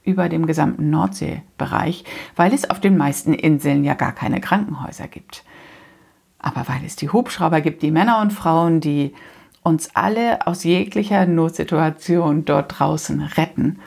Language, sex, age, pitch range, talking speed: German, female, 60-79, 160-200 Hz, 145 wpm